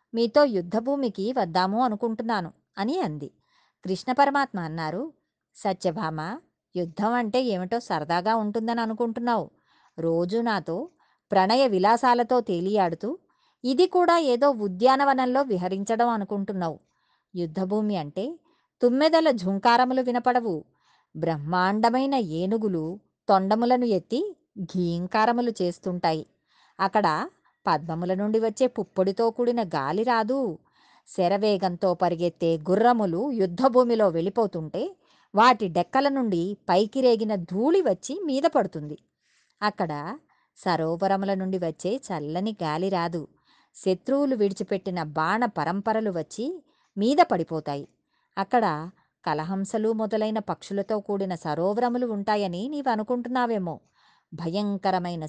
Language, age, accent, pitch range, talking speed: Telugu, 20-39, native, 180-245 Hz, 90 wpm